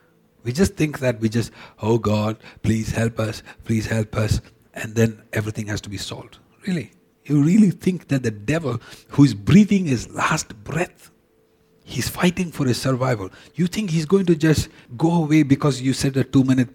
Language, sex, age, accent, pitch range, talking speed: English, male, 60-79, Indian, 115-155 Hz, 185 wpm